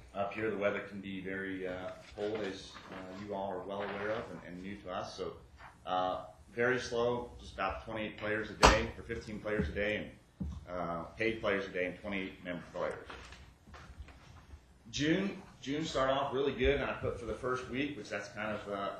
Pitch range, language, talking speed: 95-115 Hz, English, 205 wpm